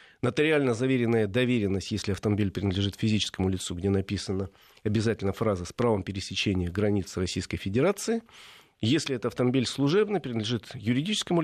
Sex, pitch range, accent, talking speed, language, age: male, 100-135 Hz, native, 125 wpm, Russian, 40-59